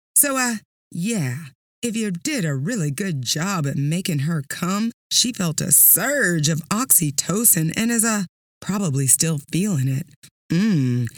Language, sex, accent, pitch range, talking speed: English, female, American, 160-230 Hz, 150 wpm